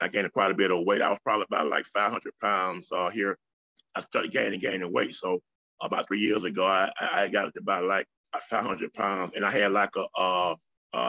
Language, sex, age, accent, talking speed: English, male, 30-49, American, 215 wpm